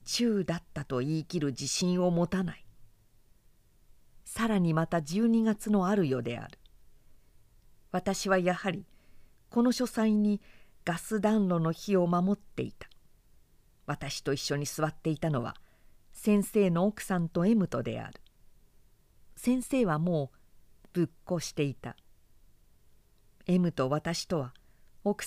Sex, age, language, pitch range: female, 50-69, Japanese, 140-195 Hz